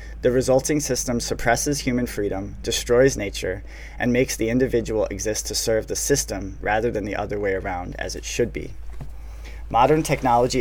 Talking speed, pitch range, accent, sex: 165 wpm, 95-125 Hz, American, male